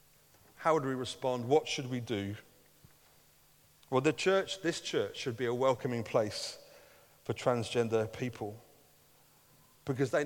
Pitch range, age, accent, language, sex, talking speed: 110-145 Hz, 30-49, British, English, male, 135 wpm